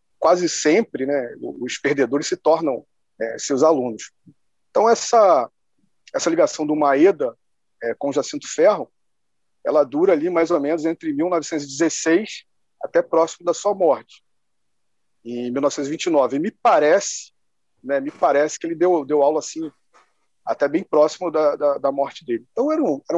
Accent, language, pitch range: Brazilian, Portuguese, 135-175 Hz